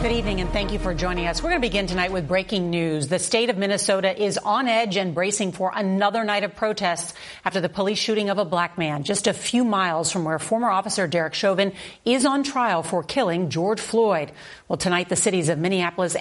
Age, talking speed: 40-59, 225 wpm